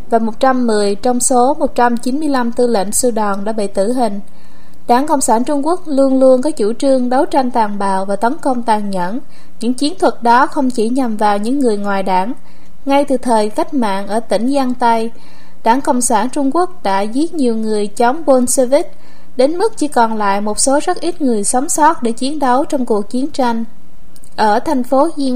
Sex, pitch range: female, 220-275 Hz